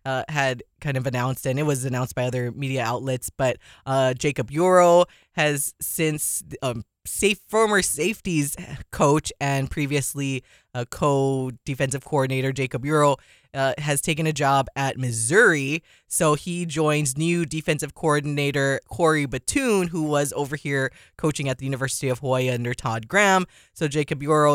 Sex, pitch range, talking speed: female, 135-155 Hz, 150 wpm